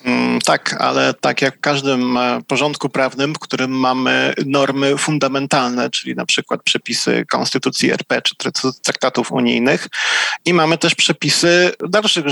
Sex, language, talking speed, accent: male, Polish, 130 wpm, native